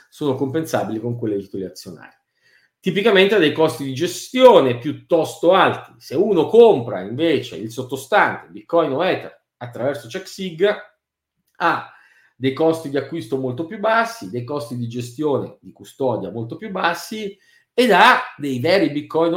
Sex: male